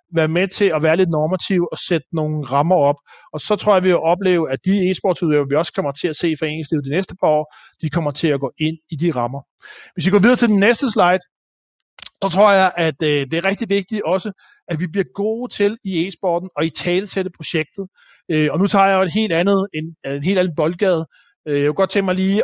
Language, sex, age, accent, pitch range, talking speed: Danish, male, 30-49, native, 160-195 Hz, 240 wpm